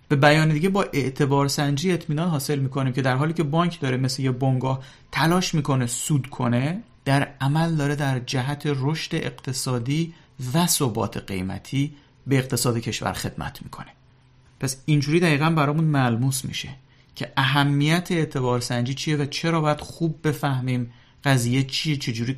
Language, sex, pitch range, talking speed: Persian, male, 115-145 Hz, 145 wpm